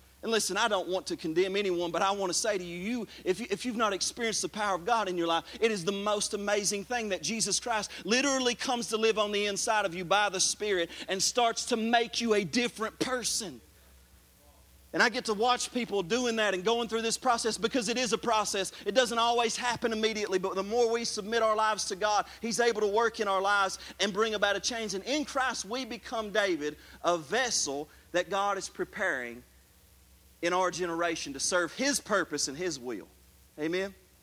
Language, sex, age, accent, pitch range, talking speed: English, male, 40-59, American, 180-230 Hz, 215 wpm